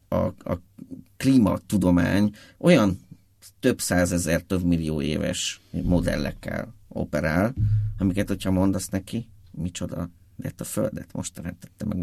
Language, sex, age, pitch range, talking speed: Hungarian, male, 50-69, 90-110 Hz, 110 wpm